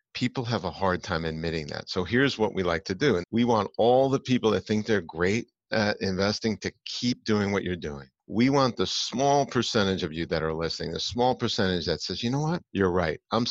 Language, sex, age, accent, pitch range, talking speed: English, male, 50-69, American, 90-115 Hz, 235 wpm